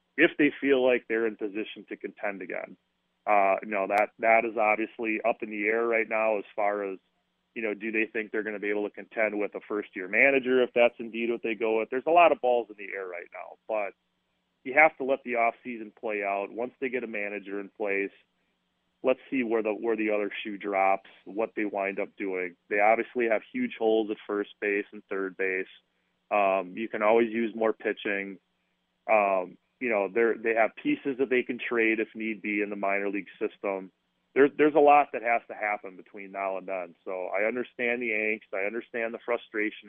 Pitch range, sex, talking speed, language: 100-115 Hz, male, 225 wpm, English